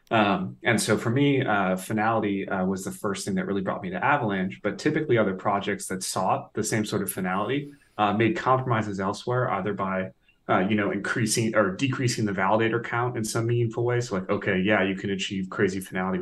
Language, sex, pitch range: English, male, 95-120 Hz